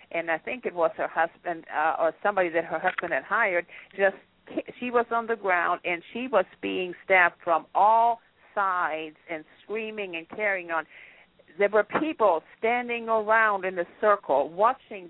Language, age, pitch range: English, 50-69, 170-215 Hz